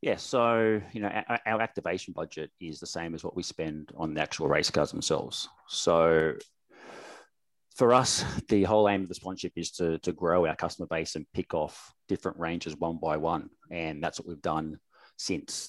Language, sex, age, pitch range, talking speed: English, male, 30-49, 85-100 Hz, 190 wpm